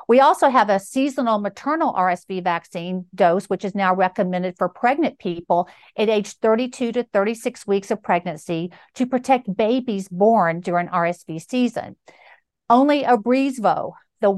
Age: 50-69